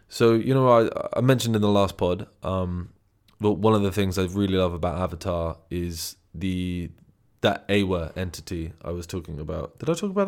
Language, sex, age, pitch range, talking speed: English, male, 20-39, 85-100 Hz, 200 wpm